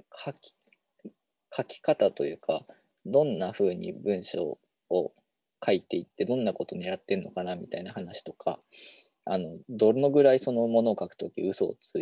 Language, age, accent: Japanese, 20-39, native